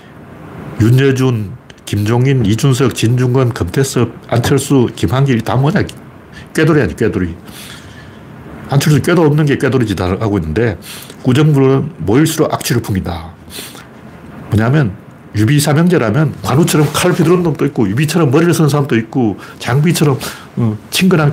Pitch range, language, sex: 105-150 Hz, Korean, male